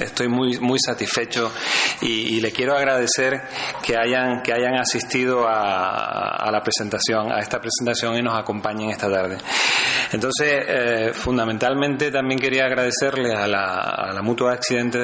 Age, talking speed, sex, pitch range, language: 30-49, 150 wpm, male, 115-130 Hz, Spanish